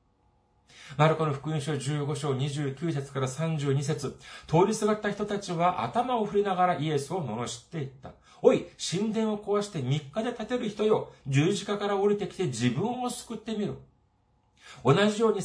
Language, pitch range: Japanese, 125-195 Hz